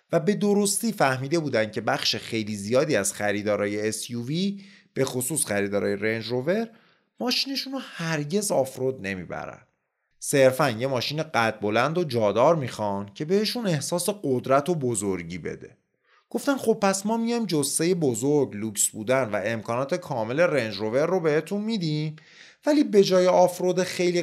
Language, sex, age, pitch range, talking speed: Persian, male, 30-49, 115-185 Hz, 145 wpm